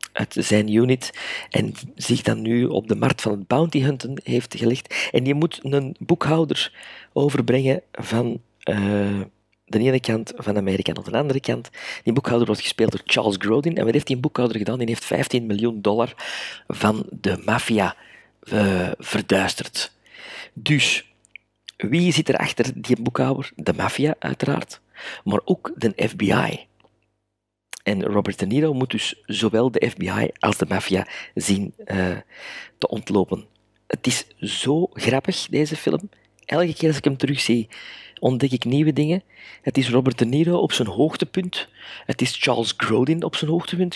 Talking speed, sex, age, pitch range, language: 160 wpm, male, 50-69, 110-145 Hz, Dutch